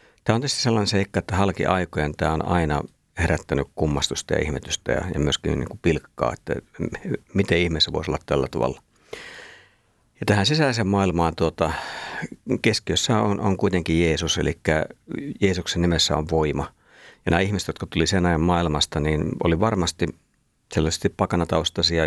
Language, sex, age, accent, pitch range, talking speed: Finnish, male, 50-69, native, 75-90 Hz, 150 wpm